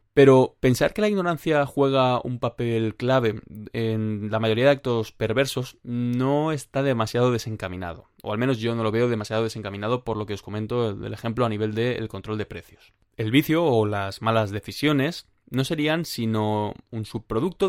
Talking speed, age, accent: 175 wpm, 20-39, Spanish